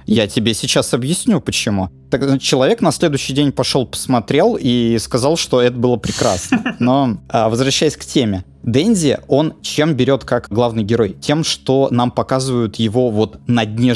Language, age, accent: Russian, 20-39, native